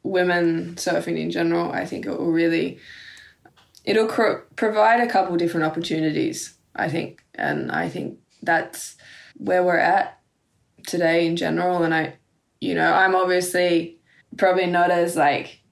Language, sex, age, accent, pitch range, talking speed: English, female, 20-39, Australian, 165-180 Hz, 145 wpm